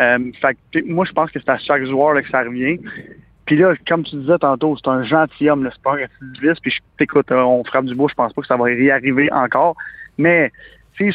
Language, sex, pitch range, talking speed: French, male, 135-165 Hz, 230 wpm